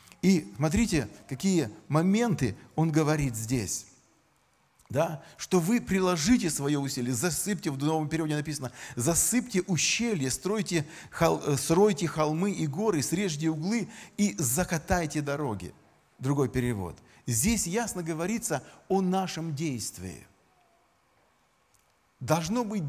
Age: 40-59